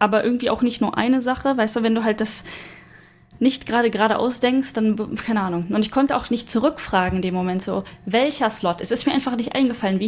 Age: 10-29